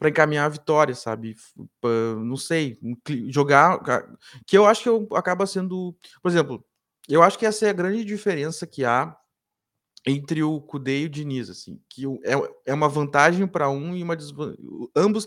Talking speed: 175 wpm